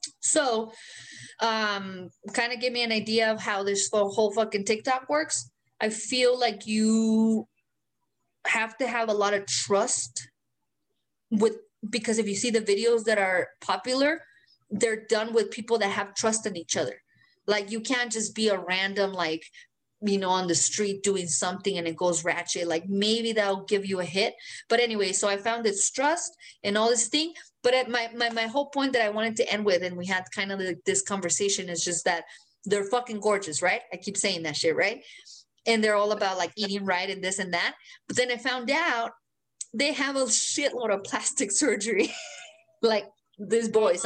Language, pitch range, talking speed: English, 195-235 Hz, 195 wpm